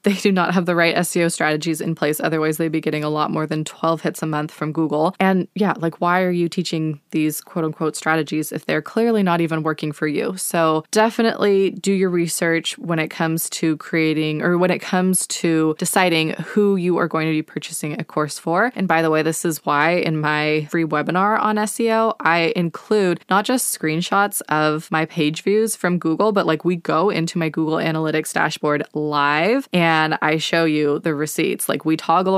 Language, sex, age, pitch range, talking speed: English, female, 20-39, 155-190 Hz, 210 wpm